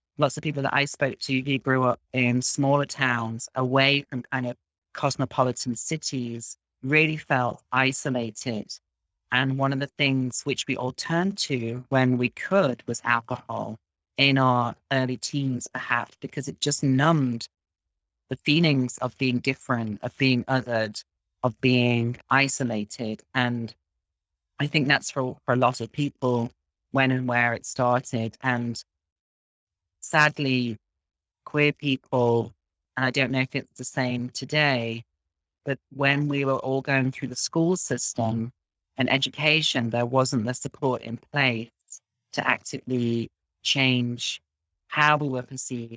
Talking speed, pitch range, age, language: 145 wpm, 115-135 Hz, 40-59, English